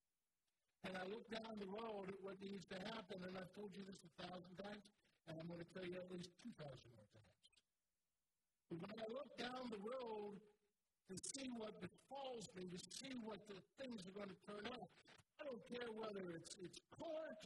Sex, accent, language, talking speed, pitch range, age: male, American, English, 205 wpm, 190-255 Hz, 50-69